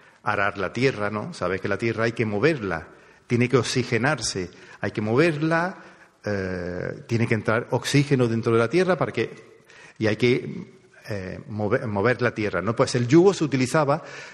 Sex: male